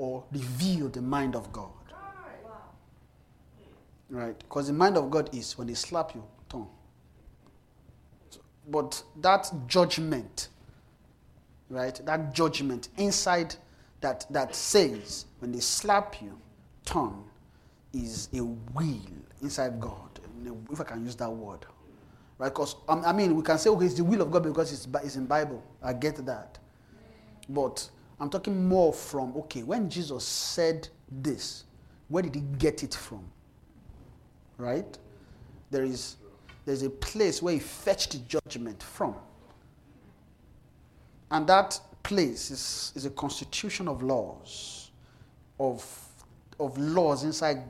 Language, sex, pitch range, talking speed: English, male, 120-160 Hz, 130 wpm